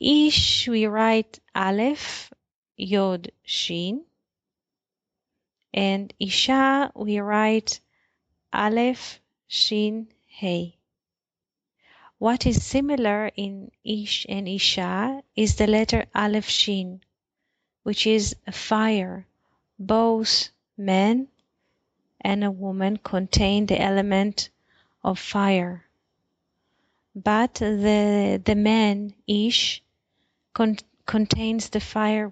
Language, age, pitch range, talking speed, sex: English, 30-49, 195-220 Hz, 90 wpm, female